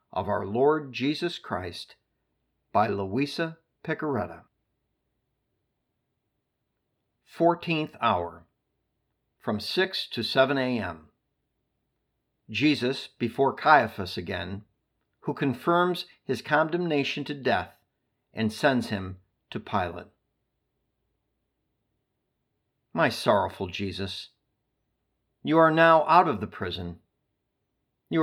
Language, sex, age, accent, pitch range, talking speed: English, male, 50-69, American, 110-155 Hz, 85 wpm